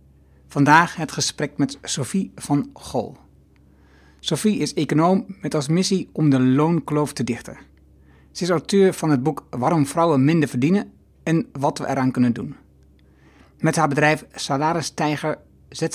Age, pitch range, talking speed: 60-79, 125-160 Hz, 145 wpm